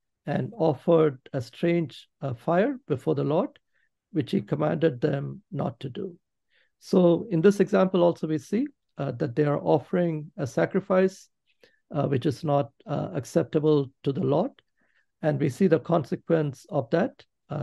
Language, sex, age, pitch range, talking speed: English, male, 60-79, 145-180 Hz, 160 wpm